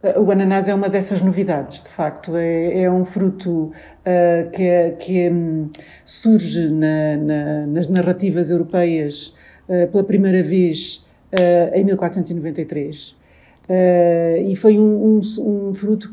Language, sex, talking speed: Portuguese, female, 110 wpm